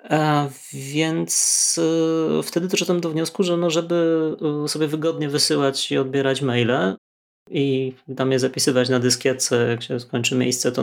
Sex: male